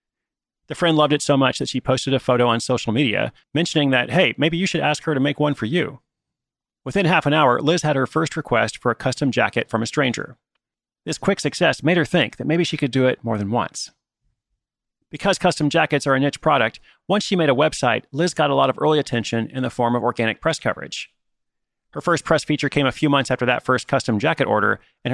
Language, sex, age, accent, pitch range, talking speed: English, male, 30-49, American, 120-150 Hz, 235 wpm